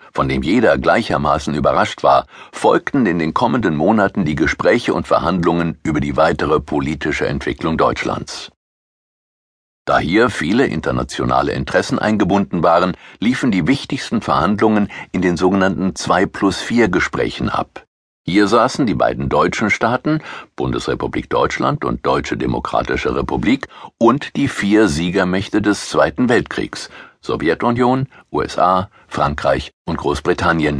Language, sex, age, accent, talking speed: German, male, 60-79, German, 120 wpm